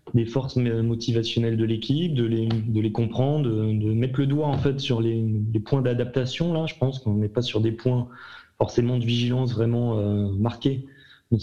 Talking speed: 200 wpm